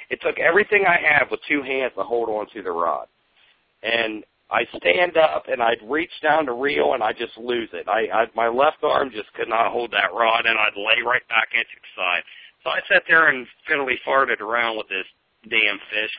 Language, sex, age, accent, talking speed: English, male, 50-69, American, 220 wpm